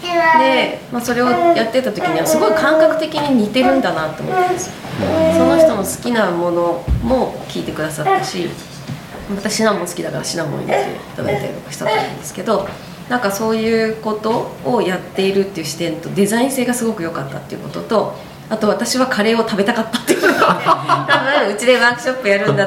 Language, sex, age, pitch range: Japanese, female, 20-39, 165-225 Hz